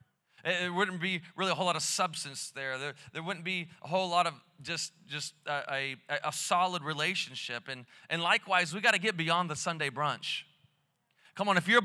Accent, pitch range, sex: American, 180-235 Hz, male